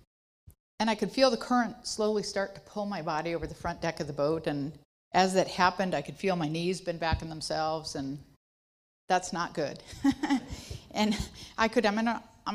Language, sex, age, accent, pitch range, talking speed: English, female, 50-69, American, 150-190 Hz, 200 wpm